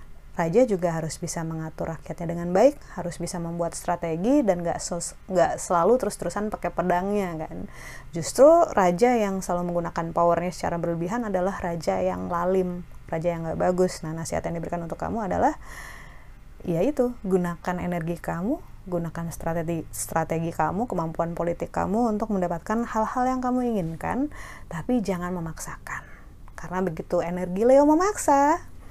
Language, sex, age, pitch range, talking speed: Indonesian, female, 30-49, 170-235 Hz, 140 wpm